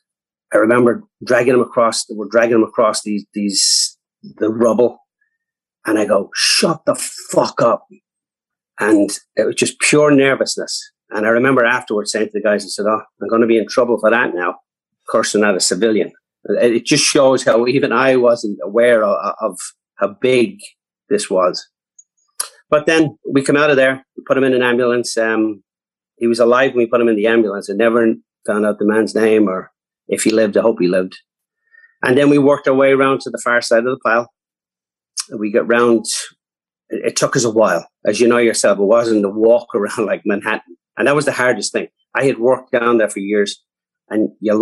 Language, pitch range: English, 110-135 Hz